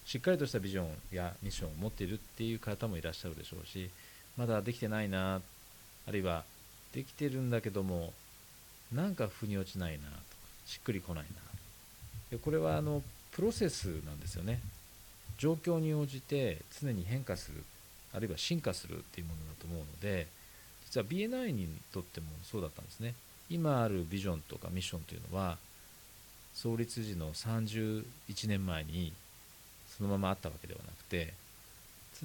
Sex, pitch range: male, 90-115 Hz